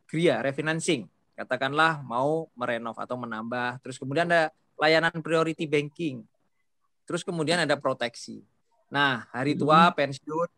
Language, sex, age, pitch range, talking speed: Indonesian, male, 20-39, 130-160 Hz, 120 wpm